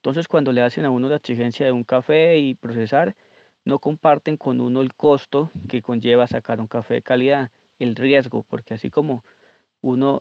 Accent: Colombian